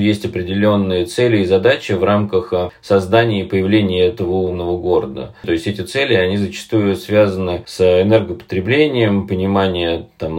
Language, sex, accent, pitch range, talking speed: Russian, male, native, 90-110 Hz, 135 wpm